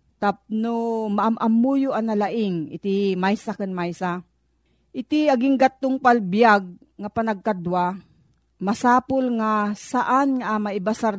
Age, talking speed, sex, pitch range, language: 40-59, 100 wpm, female, 185-240 Hz, Filipino